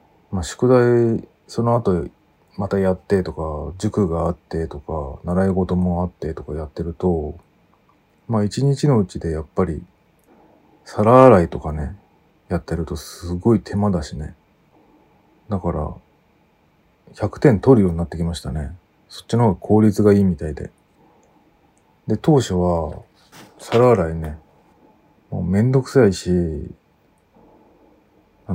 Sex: male